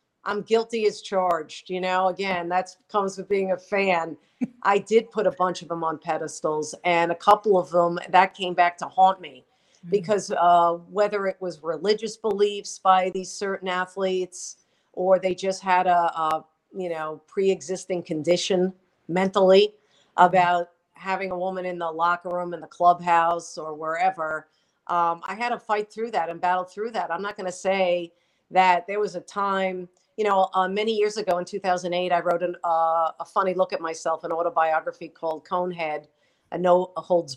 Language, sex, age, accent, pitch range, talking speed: English, female, 50-69, American, 170-190 Hz, 180 wpm